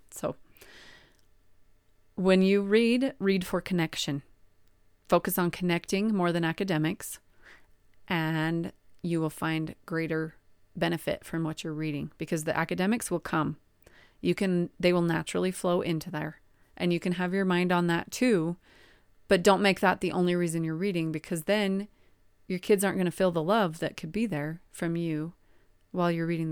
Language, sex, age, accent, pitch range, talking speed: English, female, 30-49, American, 155-180 Hz, 165 wpm